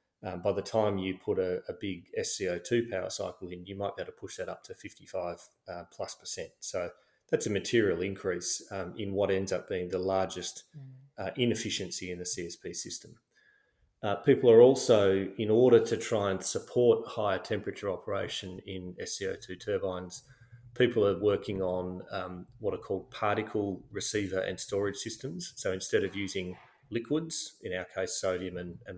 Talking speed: 175 wpm